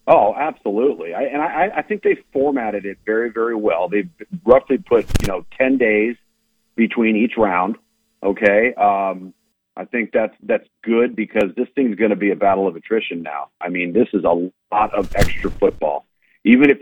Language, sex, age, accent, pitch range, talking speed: English, male, 40-59, American, 100-140 Hz, 185 wpm